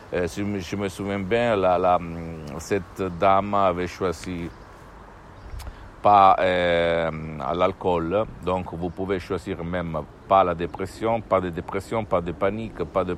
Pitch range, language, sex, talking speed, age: 85-100 Hz, Italian, male, 130 wpm, 60-79